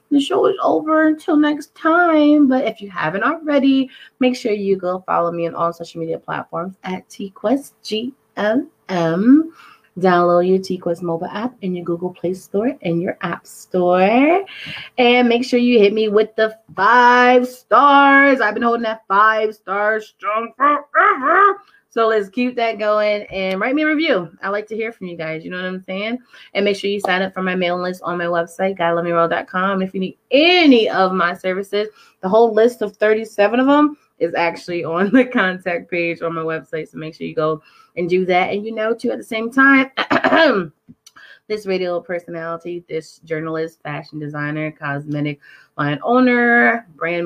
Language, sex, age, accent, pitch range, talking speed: English, female, 20-39, American, 175-250 Hz, 180 wpm